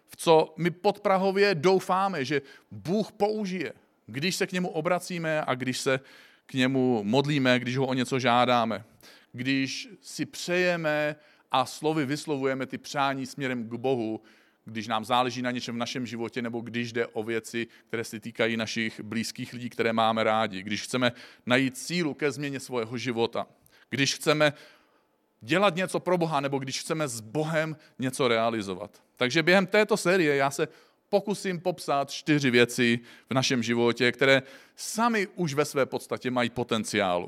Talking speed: 160 wpm